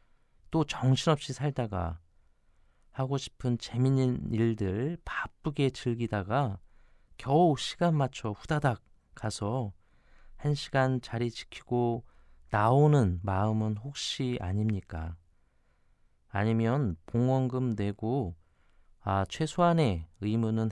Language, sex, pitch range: Korean, male, 95-130 Hz